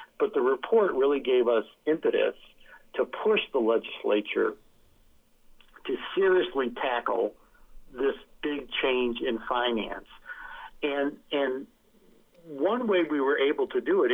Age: 50-69